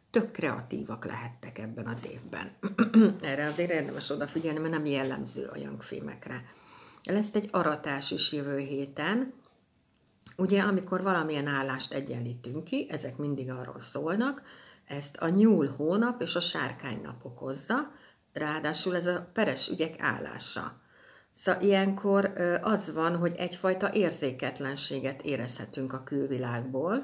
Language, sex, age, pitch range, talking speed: Hungarian, female, 60-79, 135-185 Hz, 125 wpm